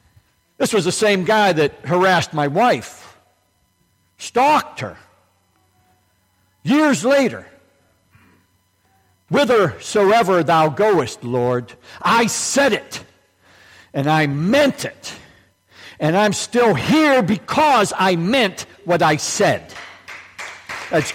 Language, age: English, 60-79